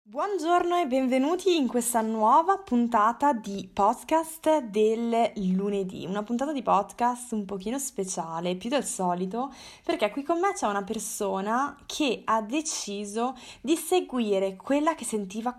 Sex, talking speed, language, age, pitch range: female, 140 wpm, Italian, 20-39, 205-285 Hz